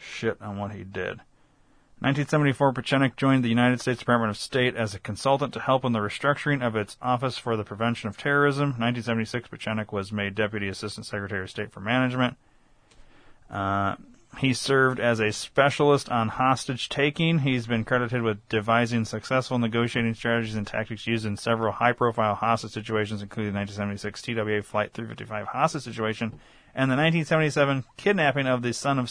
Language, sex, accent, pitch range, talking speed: English, male, American, 110-135 Hz, 165 wpm